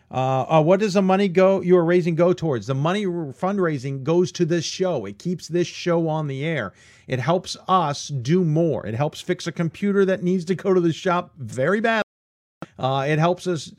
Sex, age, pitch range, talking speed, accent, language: male, 50-69, 130-190 Hz, 210 wpm, American, English